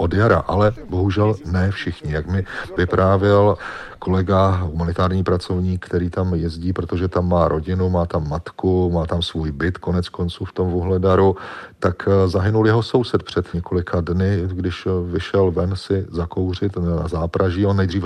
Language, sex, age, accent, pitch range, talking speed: Czech, male, 40-59, native, 85-100 Hz, 155 wpm